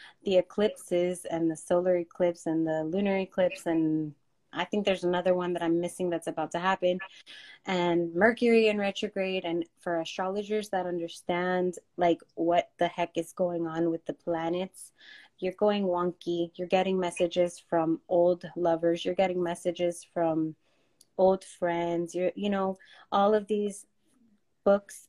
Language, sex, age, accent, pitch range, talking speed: English, female, 20-39, American, 170-195 Hz, 155 wpm